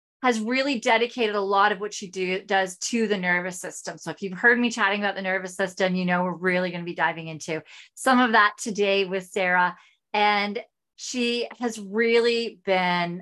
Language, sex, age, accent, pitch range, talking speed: English, female, 30-49, American, 180-220 Hz, 200 wpm